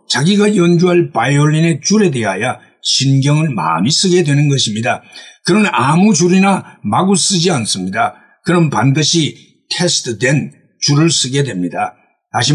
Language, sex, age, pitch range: Korean, male, 60-79, 140-190 Hz